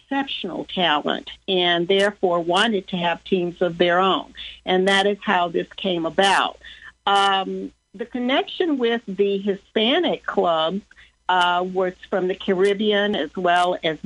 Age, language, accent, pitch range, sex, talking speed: 50-69, English, American, 180-215 Hz, female, 140 wpm